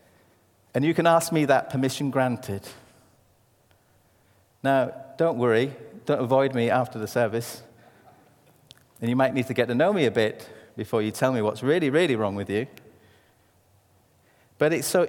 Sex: male